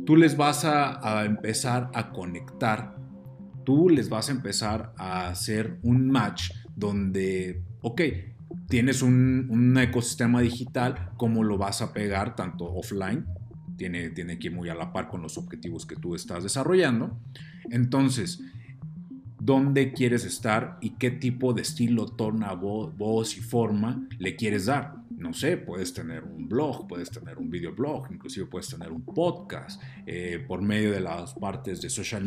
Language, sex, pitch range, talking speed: Spanish, male, 95-125 Hz, 155 wpm